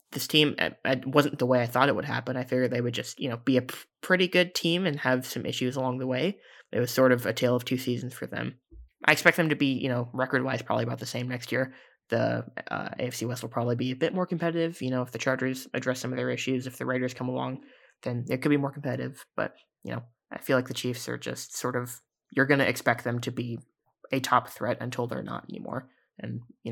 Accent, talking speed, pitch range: American, 260 wpm, 125-135 Hz